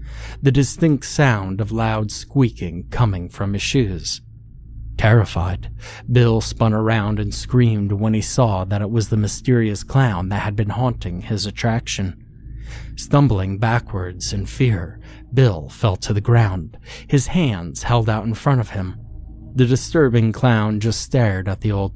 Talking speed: 155 wpm